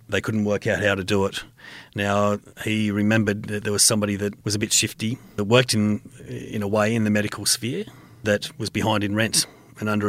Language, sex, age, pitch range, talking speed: English, male, 40-59, 100-110 Hz, 220 wpm